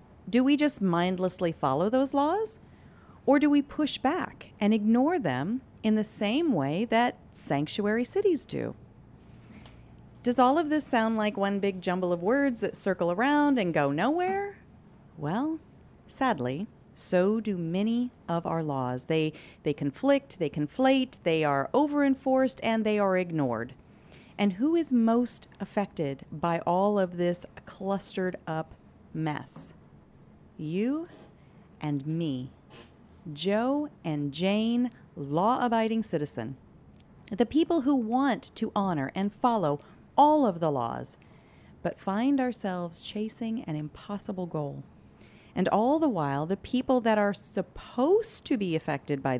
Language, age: English, 40-59